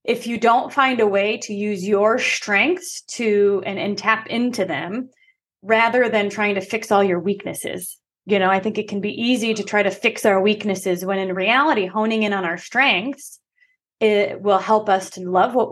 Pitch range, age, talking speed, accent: 195-235 Hz, 20-39, 200 wpm, American